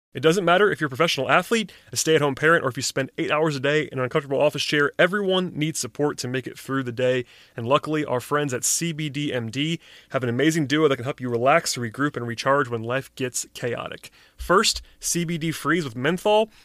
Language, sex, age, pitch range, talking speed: English, male, 30-49, 130-165 Hz, 215 wpm